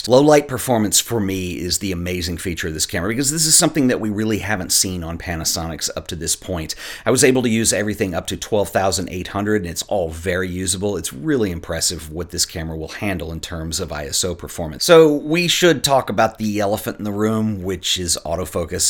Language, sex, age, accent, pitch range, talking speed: English, male, 40-59, American, 90-110 Hz, 215 wpm